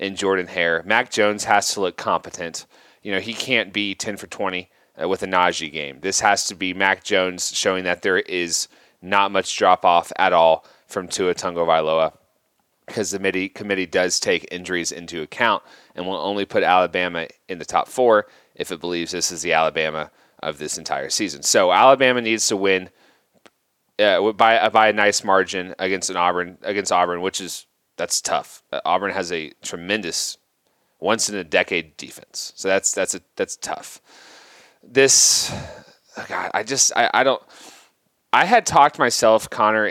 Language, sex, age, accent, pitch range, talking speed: English, male, 30-49, American, 85-100 Hz, 175 wpm